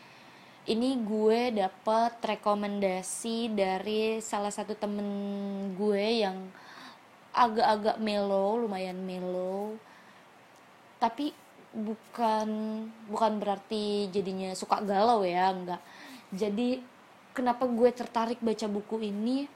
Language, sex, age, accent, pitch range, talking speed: Indonesian, female, 20-39, native, 195-225 Hz, 90 wpm